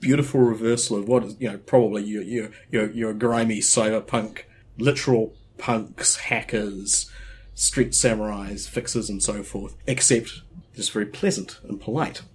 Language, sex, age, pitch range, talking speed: English, male, 30-49, 105-125 Hz, 140 wpm